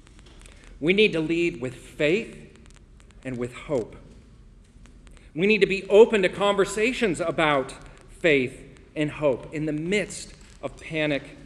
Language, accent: English, American